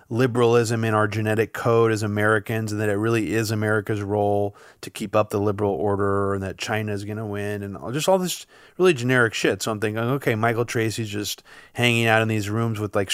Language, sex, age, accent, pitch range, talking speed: English, male, 30-49, American, 105-120 Hz, 220 wpm